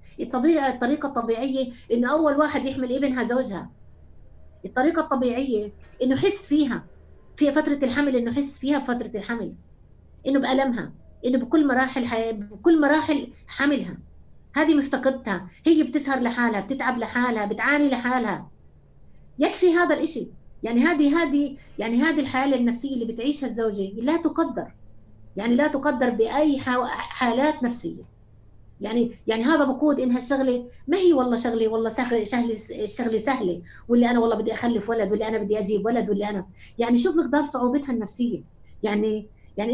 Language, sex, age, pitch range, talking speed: Arabic, female, 30-49, 230-290 Hz, 145 wpm